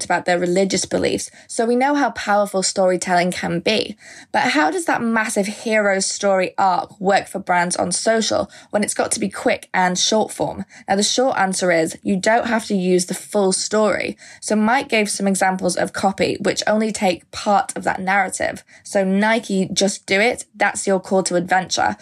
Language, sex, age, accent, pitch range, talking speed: English, female, 20-39, British, 185-210 Hz, 195 wpm